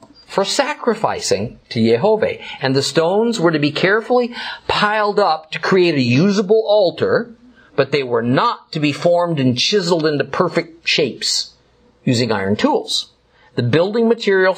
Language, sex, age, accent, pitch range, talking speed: English, male, 50-69, American, 140-185 Hz, 150 wpm